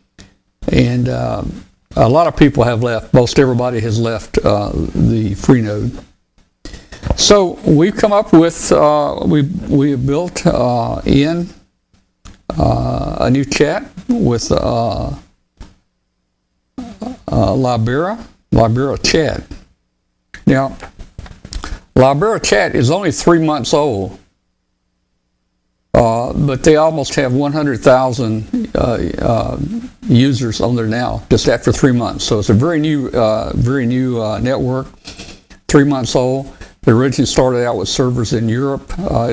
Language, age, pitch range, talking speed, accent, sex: English, 60-79, 115-145 Hz, 125 wpm, American, male